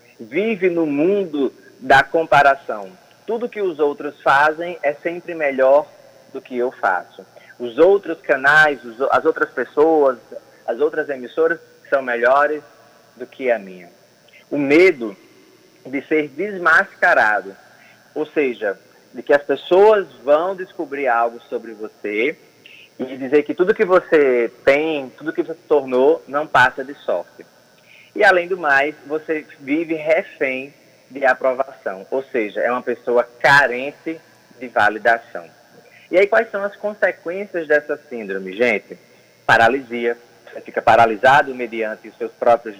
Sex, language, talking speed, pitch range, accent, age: male, Portuguese, 135 wpm, 125-165 Hz, Brazilian, 20-39